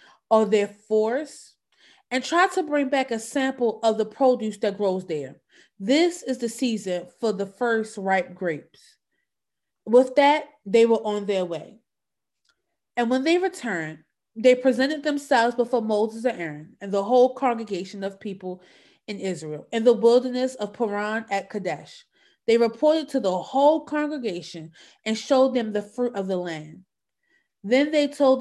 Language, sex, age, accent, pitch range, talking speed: English, female, 30-49, American, 200-260 Hz, 160 wpm